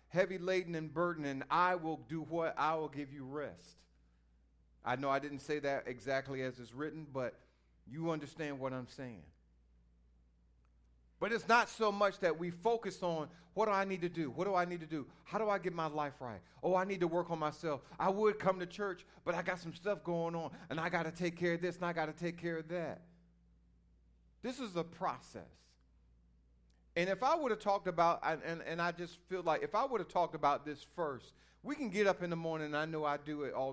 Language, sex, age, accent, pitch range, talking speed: English, male, 40-59, American, 110-180 Hz, 235 wpm